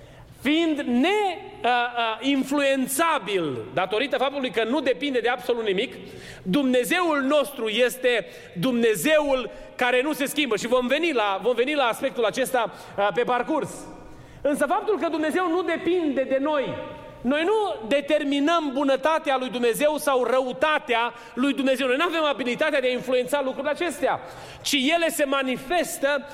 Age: 30-49